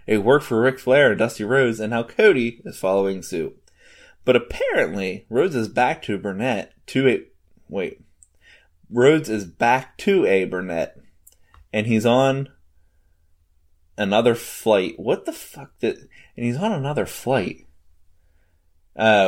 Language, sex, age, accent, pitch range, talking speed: English, male, 20-39, American, 95-130 Hz, 140 wpm